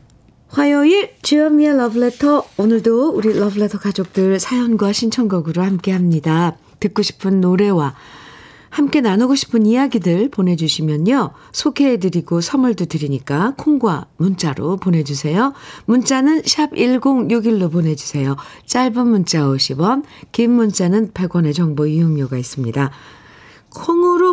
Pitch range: 160-245 Hz